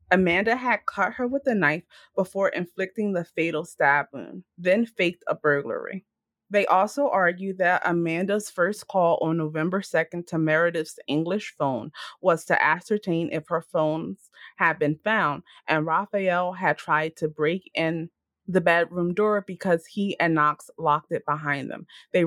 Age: 20-39